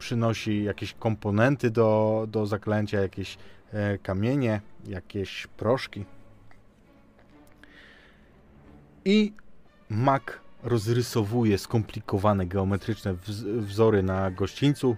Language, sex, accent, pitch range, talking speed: Polish, male, native, 100-135 Hz, 70 wpm